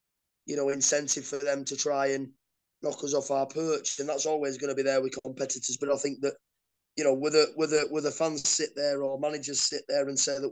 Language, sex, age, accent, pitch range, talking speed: English, male, 20-39, British, 135-150 Hz, 250 wpm